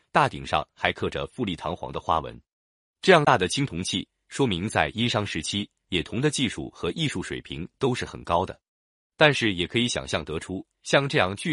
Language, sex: Chinese, male